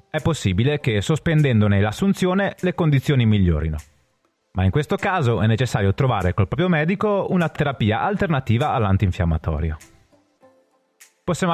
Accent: native